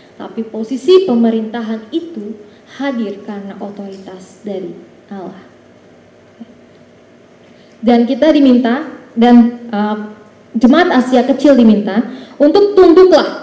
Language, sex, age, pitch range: Indonesian, female, 20-39, 210-280 Hz